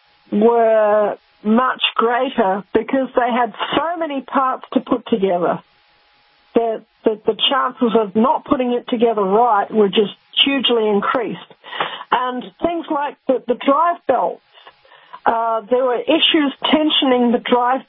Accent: Australian